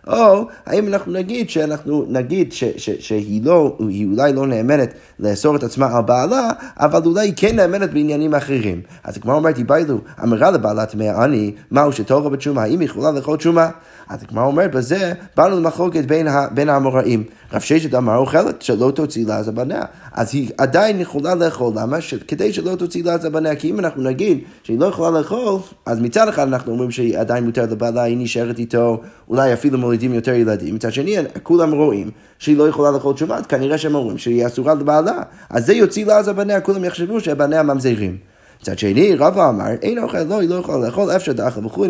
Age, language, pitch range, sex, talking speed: 30-49, Hebrew, 120-165 Hz, male, 170 wpm